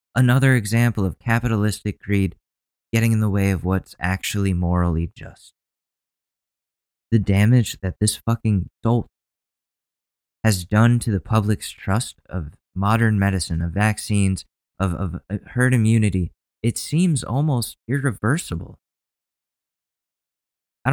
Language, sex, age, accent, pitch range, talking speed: English, male, 20-39, American, 95-120 Hz, 110 wpm